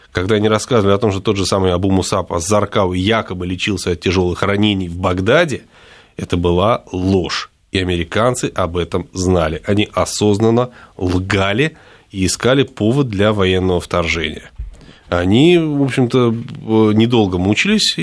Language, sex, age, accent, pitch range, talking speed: Russian, male, 20-39, native, 90-125 Hz, 135 wpm